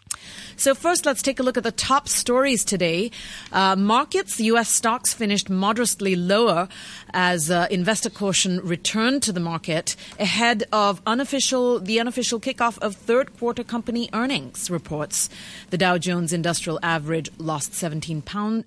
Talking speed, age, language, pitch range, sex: 150 wpm, 30-49, English, 160-215 Hz, female